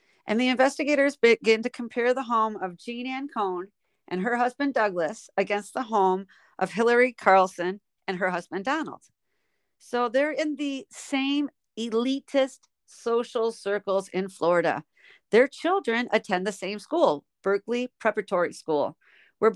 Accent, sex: American, female